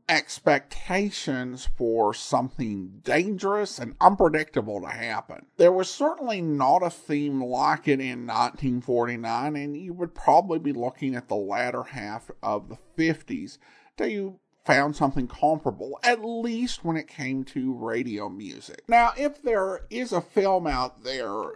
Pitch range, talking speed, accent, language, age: 135-210 Hz, 145 wpm, American, English, 50-69